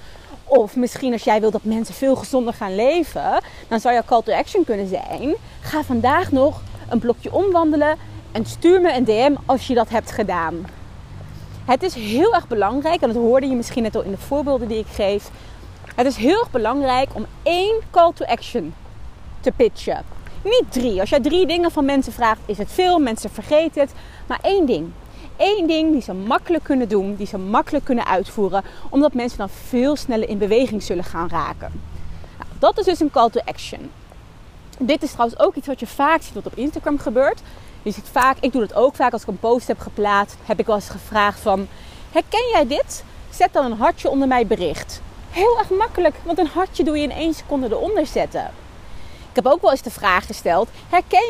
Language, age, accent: Dutch, 30-49, Dutch